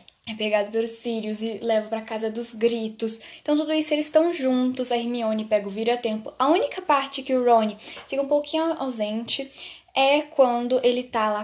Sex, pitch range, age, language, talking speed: female, 225-280 Hz, 10-29, Portuguese, 190 wpm